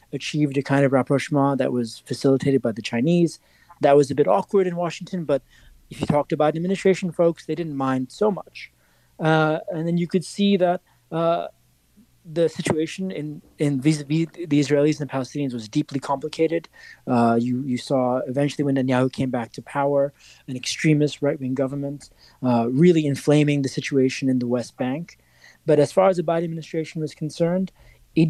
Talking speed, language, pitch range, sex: 185 wpm, English, 135-170 Hz, male